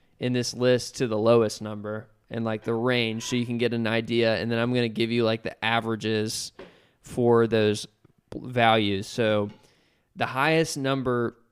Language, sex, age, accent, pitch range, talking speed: English, male, 20-39, American, 110-125 Hz, 175 wpm